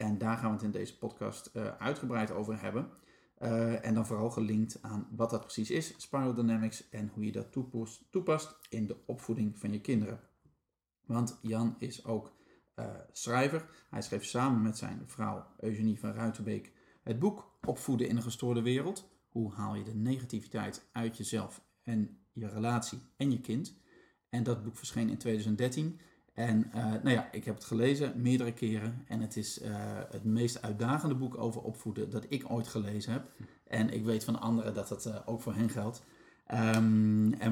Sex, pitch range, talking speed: male, 110-120 Hz, 180 wpm